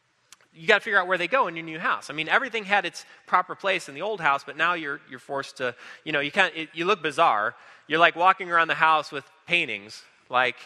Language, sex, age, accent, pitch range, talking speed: English, male, 20-39, American, 150-200 Hz, 260 wpm